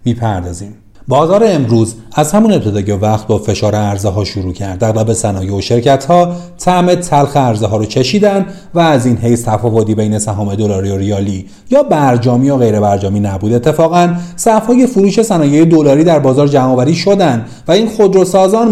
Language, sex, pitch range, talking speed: Persian, male, 110-175 Hz, 155 wpm